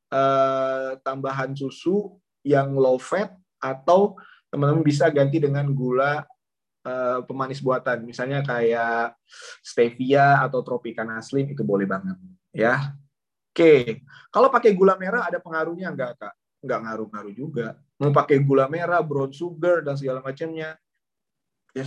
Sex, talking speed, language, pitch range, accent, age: male, 130 wpm, Indonesian, 135-185 Hz, native, 20-39